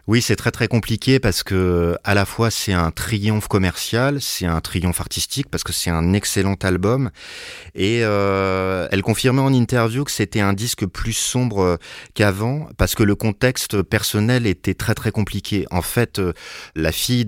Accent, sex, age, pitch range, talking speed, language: French, male, 30-49, 90-115 Hz, 175 wpm, French